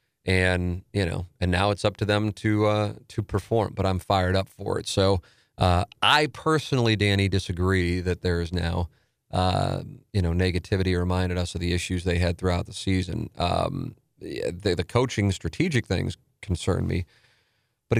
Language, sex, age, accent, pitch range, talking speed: English, male, 40-59, American, 95-120 Hz, 175 wpm